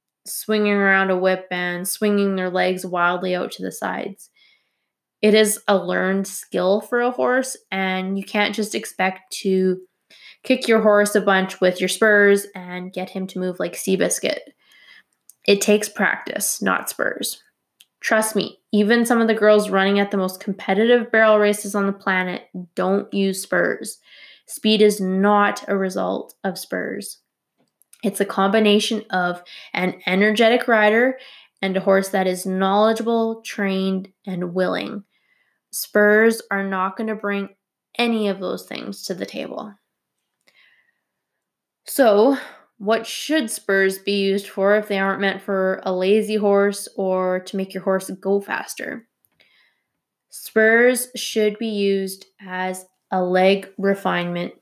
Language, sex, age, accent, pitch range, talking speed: English, female, 10-29, American, 190-215 Hz, 145 wpm